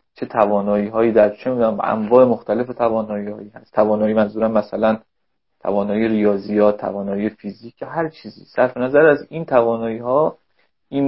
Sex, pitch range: male, 110-140 Hz